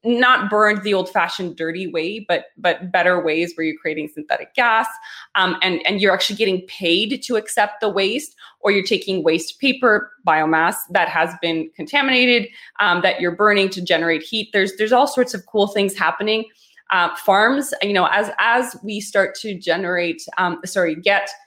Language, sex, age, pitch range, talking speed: English, female, 20-39, 180-225 Hz, 180 wpm